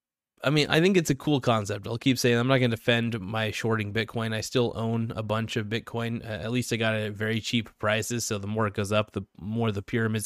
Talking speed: 270 wpm